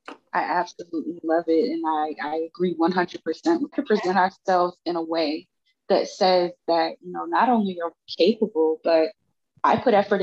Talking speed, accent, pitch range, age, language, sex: 175 wpm, American, 165-215 Hz, 20-39, English, female